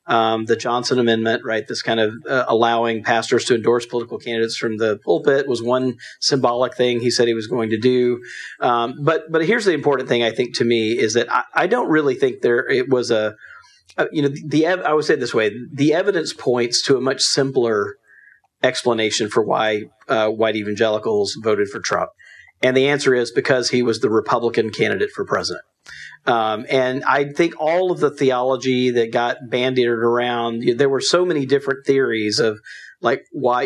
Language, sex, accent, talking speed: English, male, American, 200 wpm